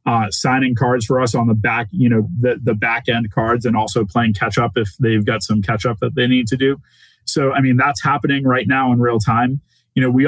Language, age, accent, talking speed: English, 20-39, American, 255 wpm